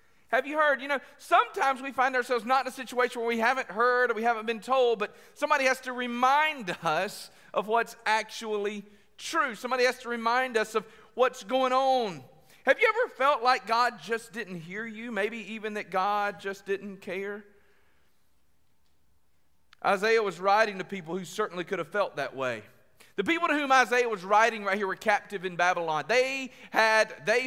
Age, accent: 40-59, American